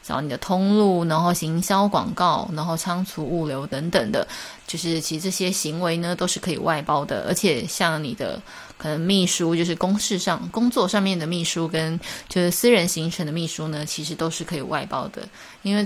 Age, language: 20-39, Chinese